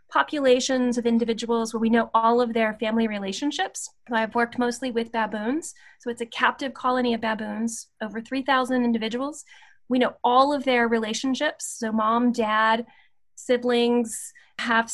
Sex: female